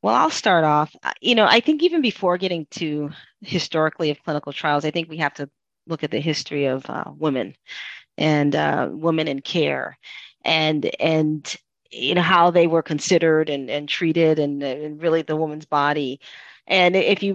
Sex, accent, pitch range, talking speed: female, American, 155-190 Hz, 185 wpm